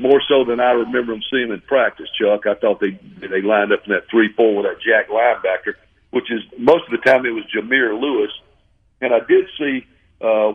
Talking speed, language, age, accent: 215 wpm, English, 50-69, American